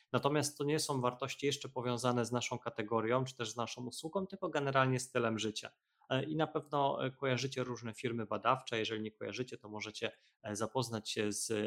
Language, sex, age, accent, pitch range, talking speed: Polish, male, 20-39, native, 110-130 Hz, 180 wpm